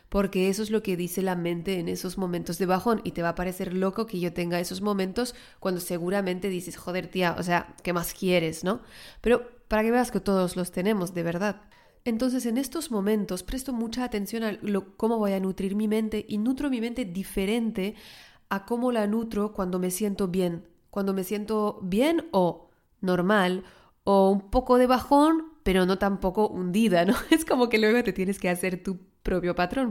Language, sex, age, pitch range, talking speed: Spanish, female, 30-49, 180-215 Hz, 200 wpm